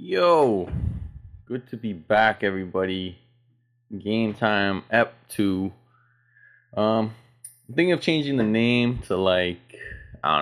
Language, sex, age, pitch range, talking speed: English, male, 20-39, 95-120 Hz, 120 wpm